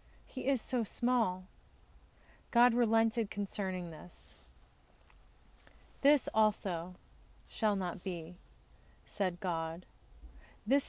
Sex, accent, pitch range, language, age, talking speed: female, American, 175-235 Hz, English, 30-49, 90 wpm